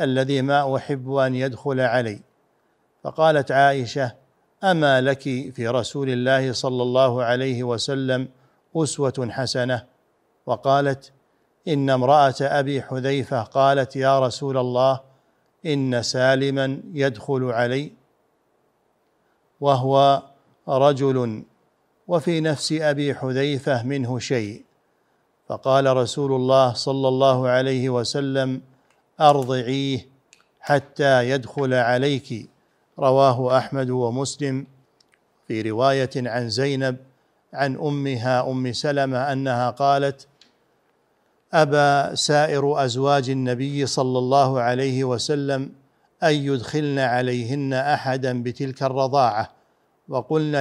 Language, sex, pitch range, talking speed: Arabic, male, 130-140 Hz, 95 wpm